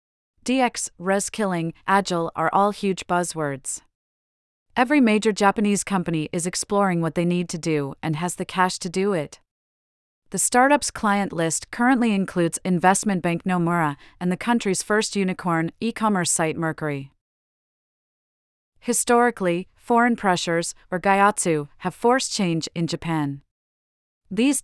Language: English